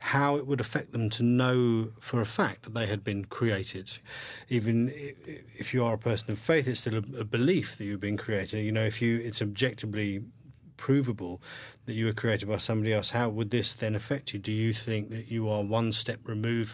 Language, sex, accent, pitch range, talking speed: English, male, British, 105-125 Hz, 215 wpm